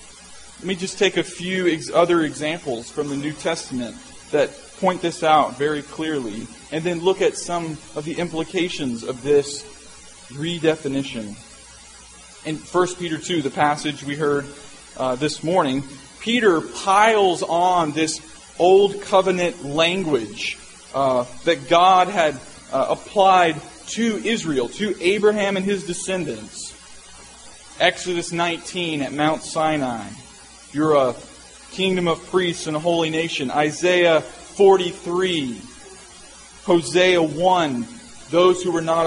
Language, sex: English, male